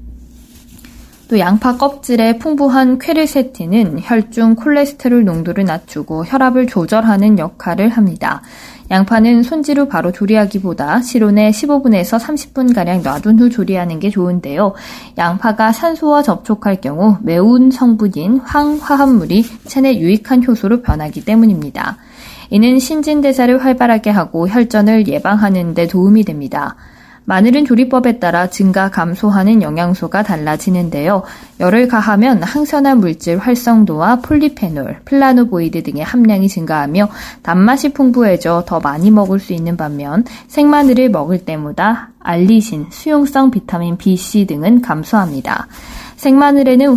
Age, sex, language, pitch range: 20-39, female, Korean, 180-245 Hz